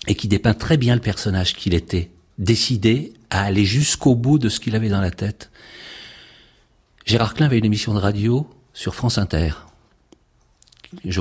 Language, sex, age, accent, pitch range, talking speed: French, male, 60-79, French, 100-150 Hz, 170 wpm